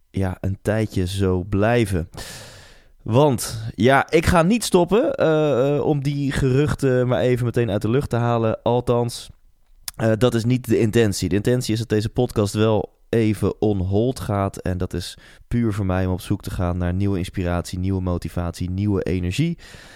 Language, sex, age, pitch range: Dutch, male, 20-39, 90-120 Hz